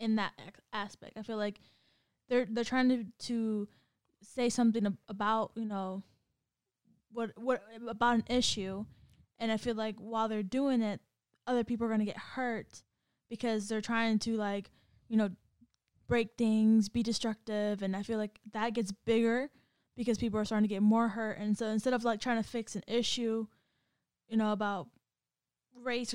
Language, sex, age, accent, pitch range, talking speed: English, female, 10-29, American, 210-235 Hz, 180 wpm